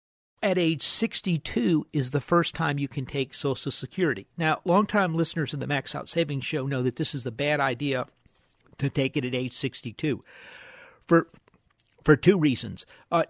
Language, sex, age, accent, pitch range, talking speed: English, male, 50-69, American, 135-165 Hz, 175 wpm